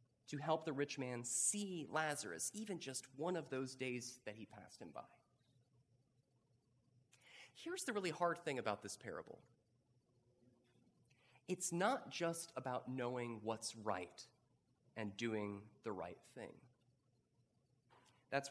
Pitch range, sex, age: 120-145 Hz, male, 30-49